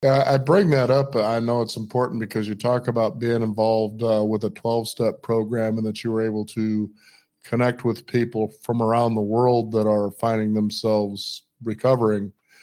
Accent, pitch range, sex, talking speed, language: American, 110-125 Hz, male, 175 wpm, English